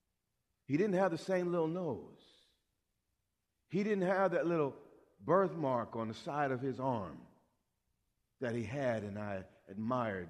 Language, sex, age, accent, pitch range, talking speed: English, male, 50-69, American, 130-210 Hz, 145 wpm